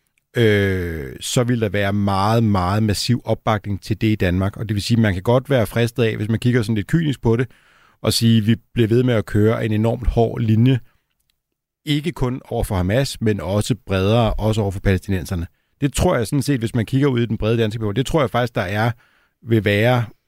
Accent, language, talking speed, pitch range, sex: native, Danish, 235 wpm, 105-125 Hz, male